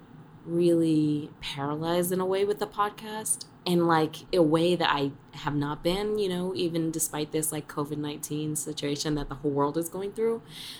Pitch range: 140-165 Hz